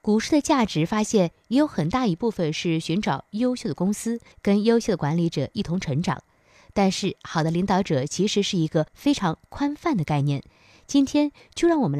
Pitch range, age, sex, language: 160-245 Hz, 20-39, female, Chinese